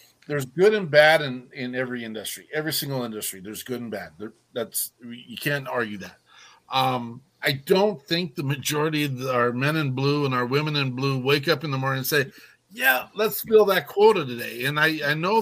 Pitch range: 125-145 Hz